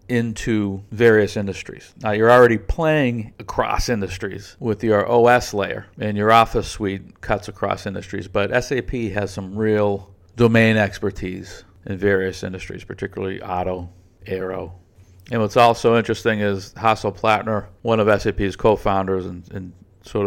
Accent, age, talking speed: American, 50-69, 140 wpm